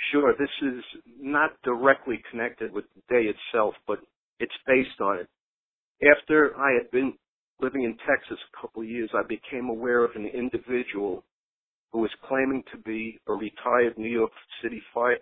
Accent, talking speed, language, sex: American, 170 wpm, English, male